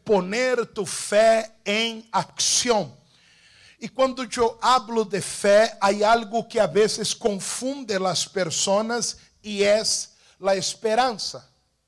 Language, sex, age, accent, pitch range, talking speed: Spanish, male, 60-79, Brazilian, 195-235 Hz, 115 wpm